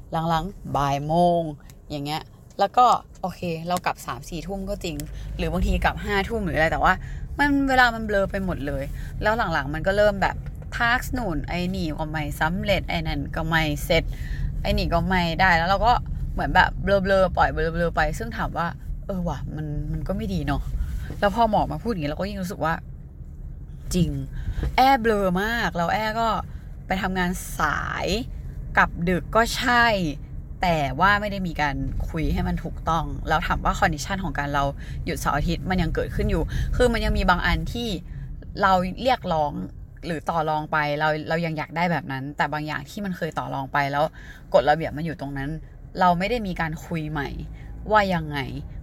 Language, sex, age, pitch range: Thai, female, 20-39, 150-195 Hz